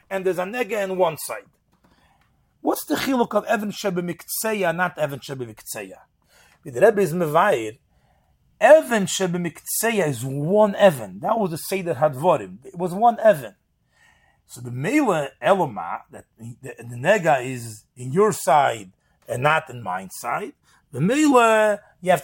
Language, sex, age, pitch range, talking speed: English, male, 40-59, 165-220 Hz, 155 wpm